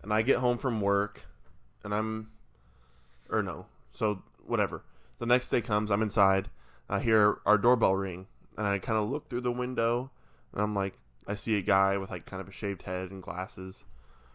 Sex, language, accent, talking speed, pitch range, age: male, English, American, 195 wpm, 90-120 Hz, 20-39